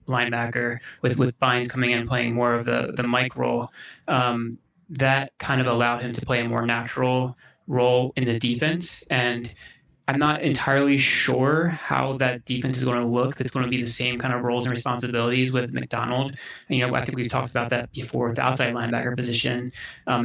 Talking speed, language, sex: 200 wpm, English, male